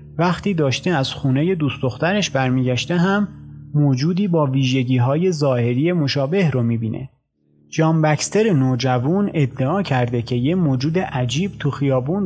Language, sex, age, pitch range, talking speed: Persian, male, 30-49, 125-170 Hz, 120 wpm